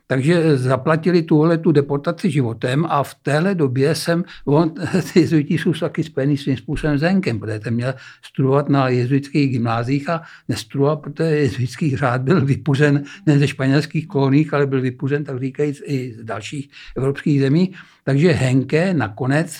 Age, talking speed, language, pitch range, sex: 60-79, 155 wpm, Czech, 130-160 Hz, male